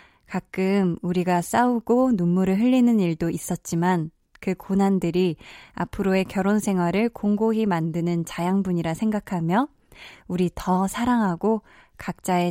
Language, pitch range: Korean, 185-260 Hz